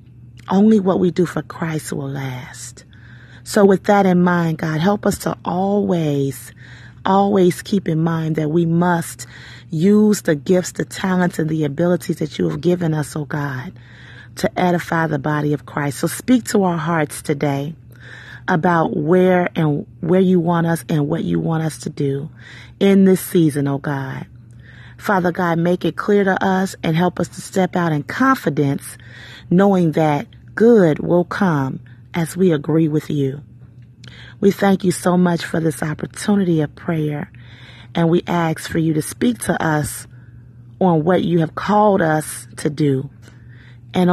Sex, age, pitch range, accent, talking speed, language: female, 30-49, 125-180 Hz, American, 170 wpm, English